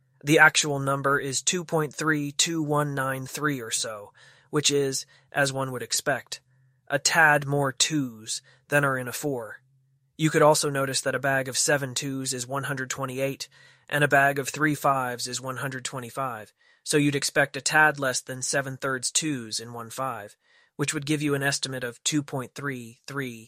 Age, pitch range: 20-39, 125-145 Hz